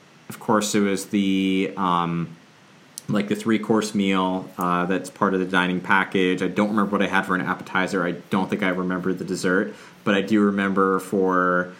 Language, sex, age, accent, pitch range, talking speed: English, male, 30-49, American, 90-105 Hz, 200 wpm